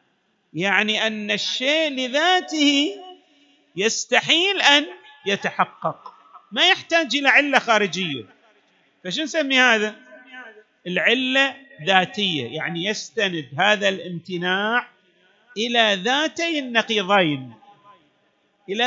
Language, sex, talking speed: Arabic, male, 80 wpm